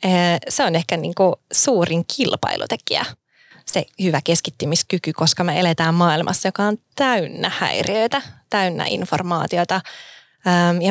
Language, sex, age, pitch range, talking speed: Finnish, female, 20-39, 165-195 Hz, 110 wpm